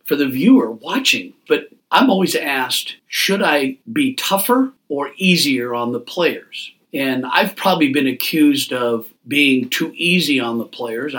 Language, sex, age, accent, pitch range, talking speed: English, male, 50-69, American, 125-185 Hz, 155 wpm